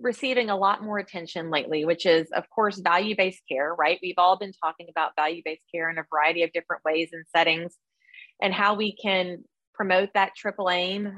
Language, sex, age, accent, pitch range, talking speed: English, female, 30-49, American, 170-220 Hz, 195 wpm